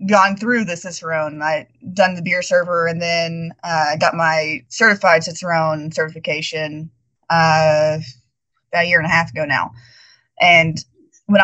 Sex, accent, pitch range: female, American, 160-195 Hz